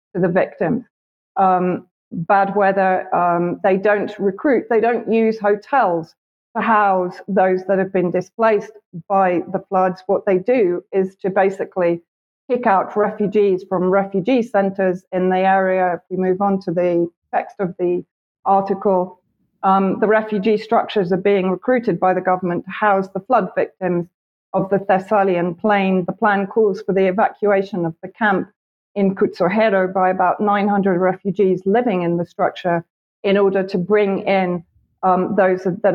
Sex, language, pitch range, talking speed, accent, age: female, English, 180-200 Hz, 155 wpm, British, 40-59